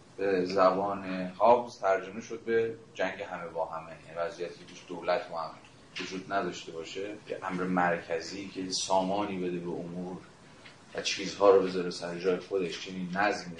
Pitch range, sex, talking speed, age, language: 90-120 Hz, male, 145 wpm, 30-49, Persian